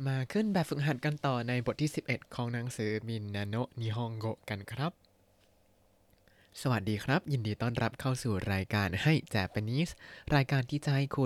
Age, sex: 20-39, male